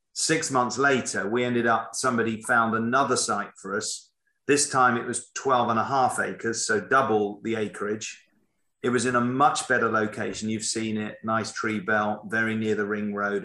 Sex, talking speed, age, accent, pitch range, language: male, 190 wpm, 40-59, British, 105-125 Hz, English